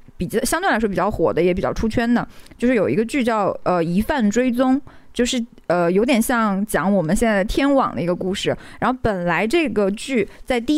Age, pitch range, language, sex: 20-39, 195-260 Hz, Chinese, female